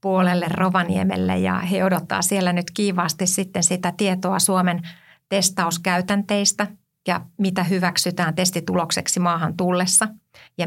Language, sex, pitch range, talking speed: Finnish, female, 175-190 Hz, 110 wpm